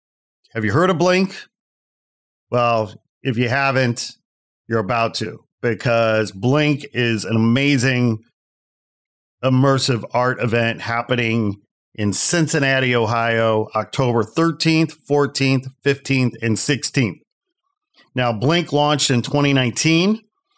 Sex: male